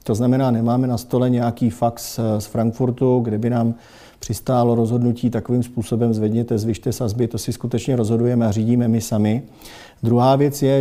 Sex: male